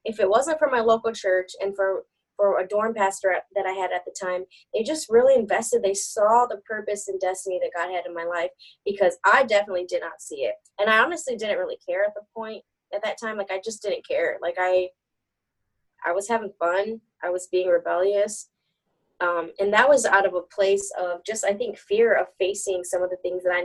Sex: female